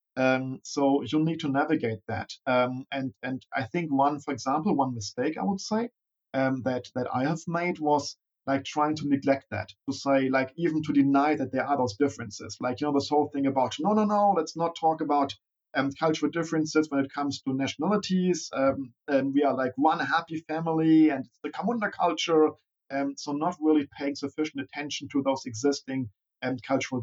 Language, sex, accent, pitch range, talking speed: English, male, German, 130-155 Hz, 200 wpm